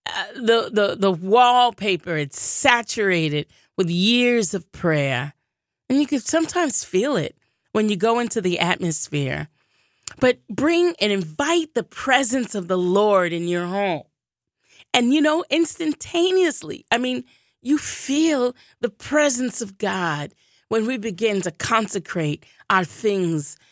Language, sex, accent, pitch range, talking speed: English, female, American, 160-230 Hz, 135 wpm